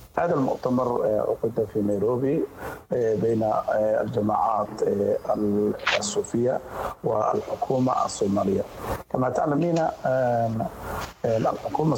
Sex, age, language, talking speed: male, 50-69, Arabic, 65 wpm